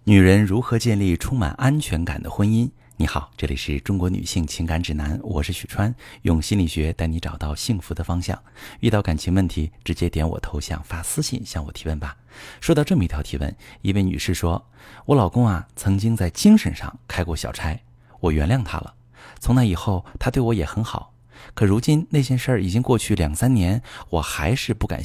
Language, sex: Chinese, male